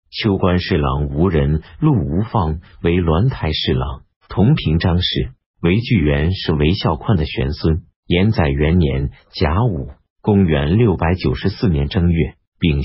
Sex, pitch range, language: male, 75-105 Hz, Chinese